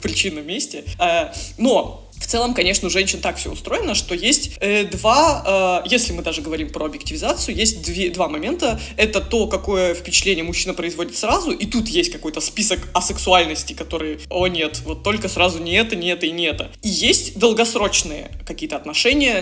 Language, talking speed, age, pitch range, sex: Russian, 175 wpm, 20-39, 165-205 Hz, female